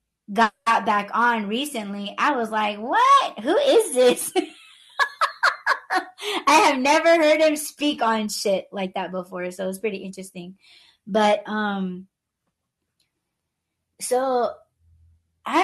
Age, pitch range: 20-39, 195-230 Hz